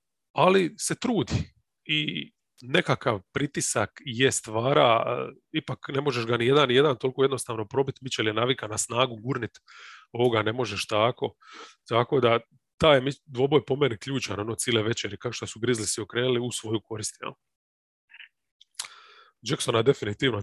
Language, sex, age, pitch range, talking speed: English, male, 30-49, 115-135 Hz, 140 wpm